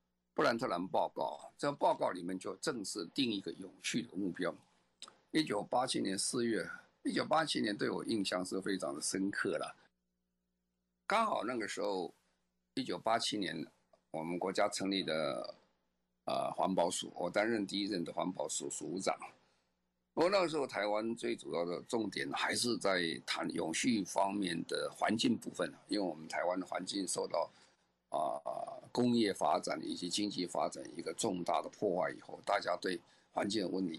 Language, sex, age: Chinese, male, 50-69